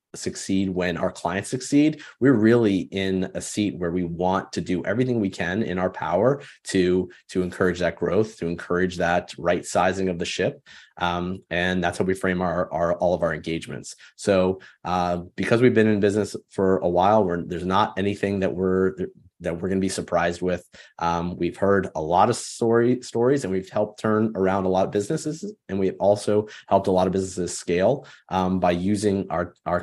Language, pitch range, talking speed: English, 90-105 Hz, 195 wpm